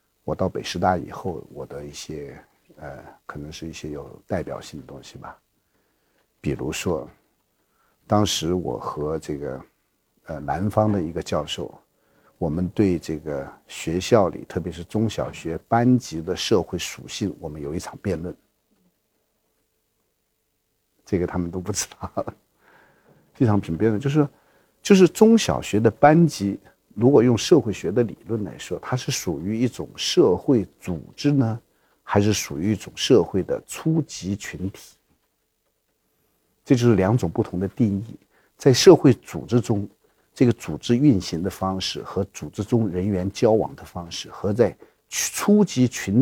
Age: 50-69